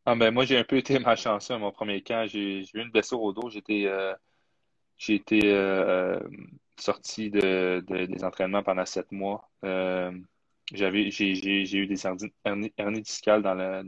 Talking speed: 200 wpm